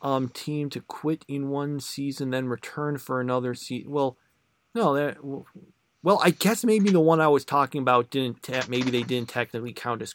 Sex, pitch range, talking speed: male, 120-145 Hz, 195 wpm